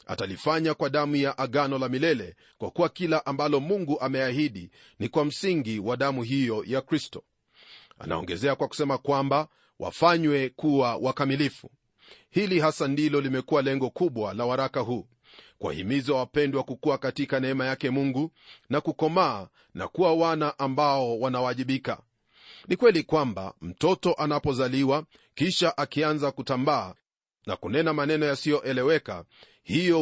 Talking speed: 130 wpm